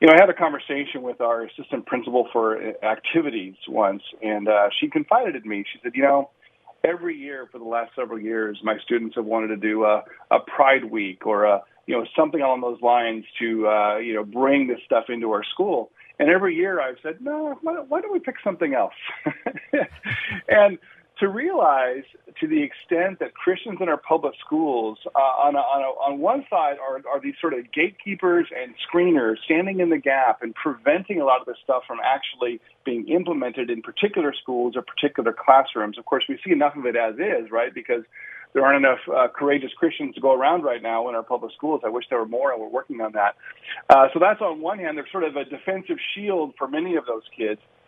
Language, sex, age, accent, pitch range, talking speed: English, male, 40-59, American, 120-195 Hz, 215 wpm